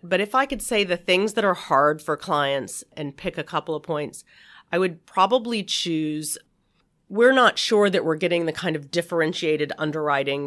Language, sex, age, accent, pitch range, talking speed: English, female, 40-59, American, 145-180 Hz, 190 wpm